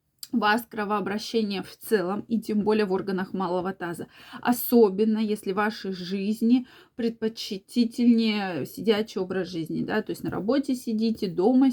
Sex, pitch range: female, 205-240 Hz